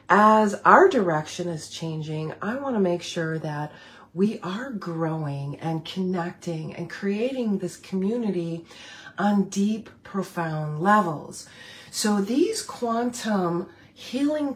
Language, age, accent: English, 40-59, American